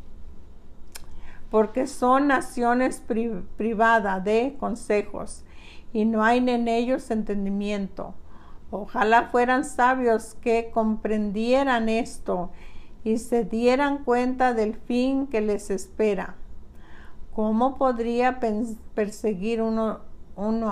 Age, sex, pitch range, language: 50-69, female, 200-245 Hz, Spanish